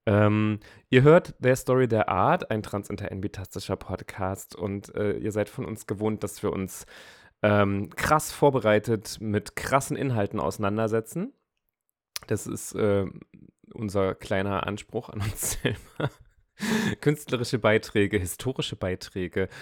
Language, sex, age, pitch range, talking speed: German, male, 30-49, 105-135 Hz, 125 wpm